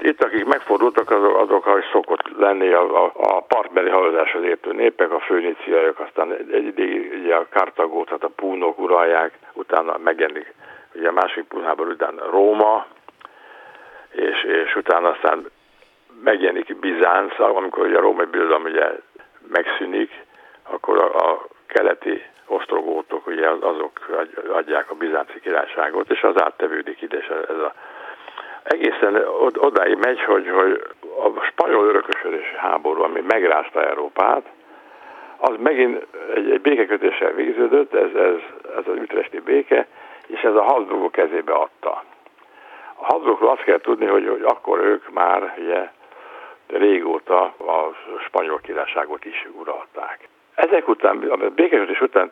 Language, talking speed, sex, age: Hungarian, 130 wpm, male, 60-79